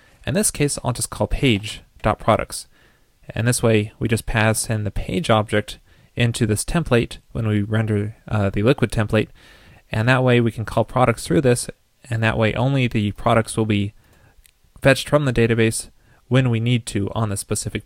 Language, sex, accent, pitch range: English, male, American, 105-125 Hz